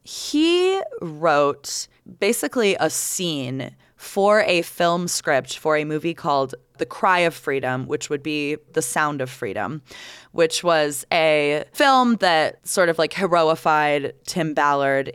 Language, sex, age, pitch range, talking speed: English, female, 20-39, 140-190 Hz, 140 wpm